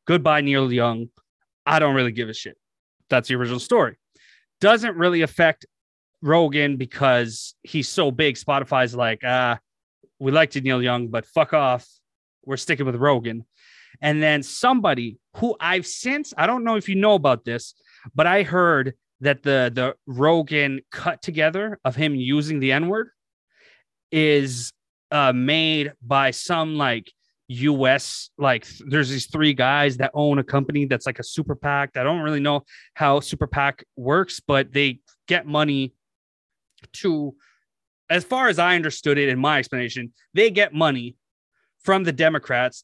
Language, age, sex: English, 30-49, male